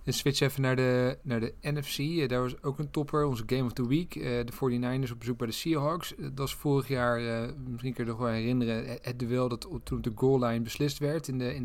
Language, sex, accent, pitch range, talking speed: Dutch, male, Dutch, 120-135 Hz, 270 wpm